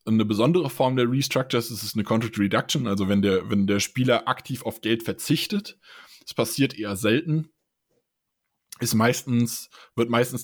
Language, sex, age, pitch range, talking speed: German, male, 20-39, 110-135 Hz, 160 wpm